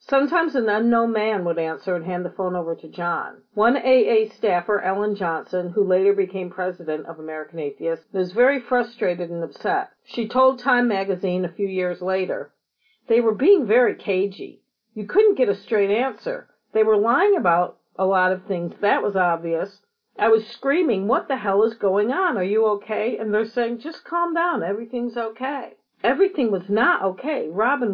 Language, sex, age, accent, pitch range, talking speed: English, female, 50-69, American, 180-250 Hz, 185 wpm